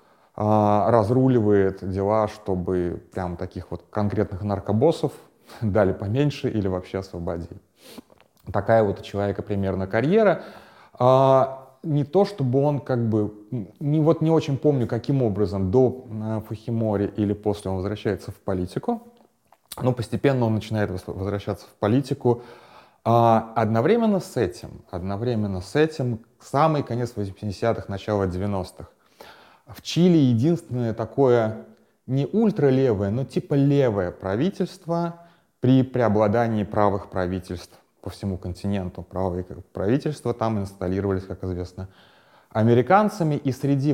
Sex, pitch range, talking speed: male, 100-135 Hz, 115 wpm